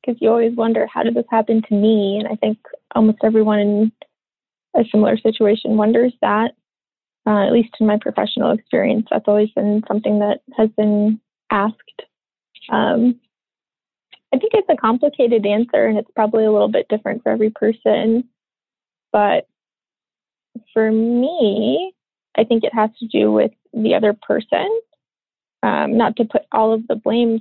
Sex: female